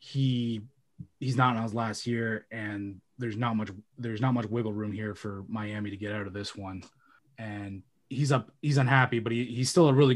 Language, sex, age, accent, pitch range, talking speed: English, male, 20-39, American, 105-130 Hz, 205 wpm